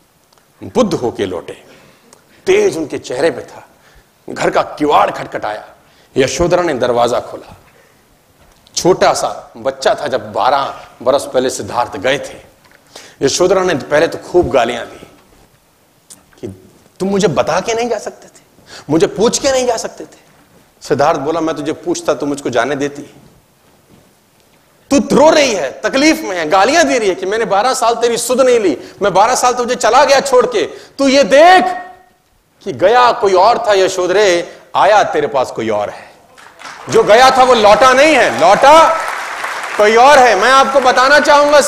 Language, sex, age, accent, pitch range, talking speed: Hindi, male, 40-59, native, 190-270 Hz, 165 wpm